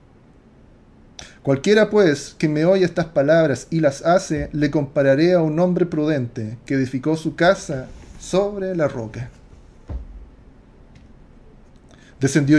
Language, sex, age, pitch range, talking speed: Spanish, male, 40-59, 125-180 Hz, 115 wpm